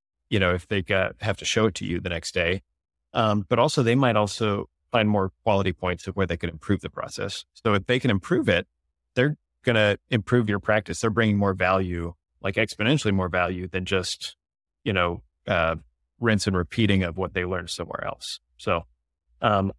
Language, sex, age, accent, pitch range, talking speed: English, male, 30-49, American, 85-110 Hz, 205 wpm